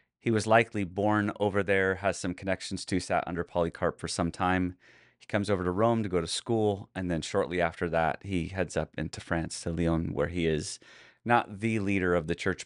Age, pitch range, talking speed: 30-49, 85-105 Hz, 220 wpm